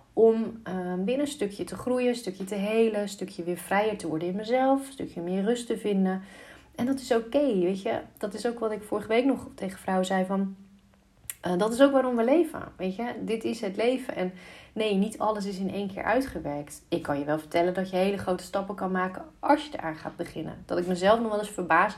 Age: 30-49